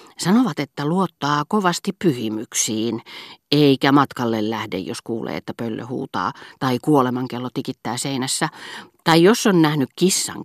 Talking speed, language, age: 130 wpm, Finnish, 40-59